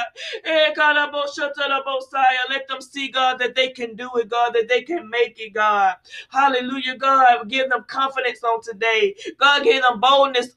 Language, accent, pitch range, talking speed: English, American, 225-270 Hz, 155 wpm